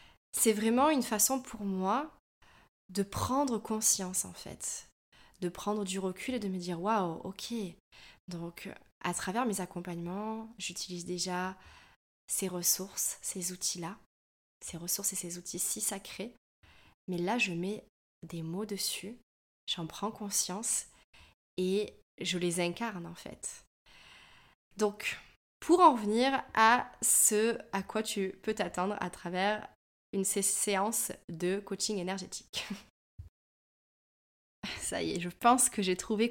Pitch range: 175-210 Hz